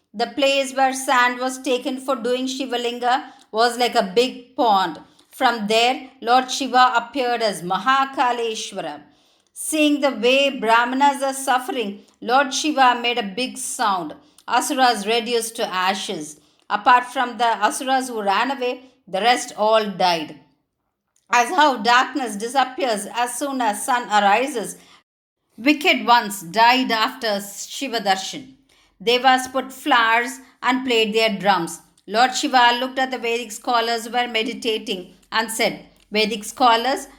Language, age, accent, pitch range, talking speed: Tamil, 50-69, native, 225-265 Hz, 135 wpm